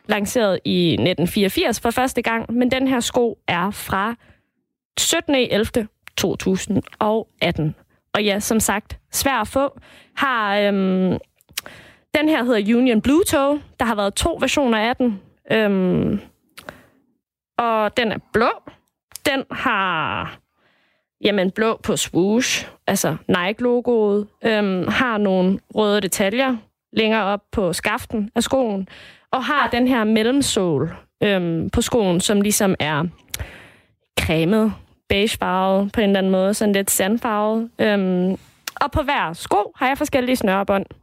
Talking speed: 130 wpm